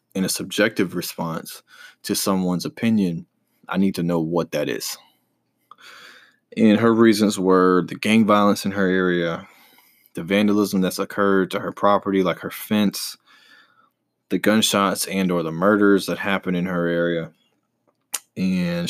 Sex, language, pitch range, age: male, English, 90-105 Hz, 20-39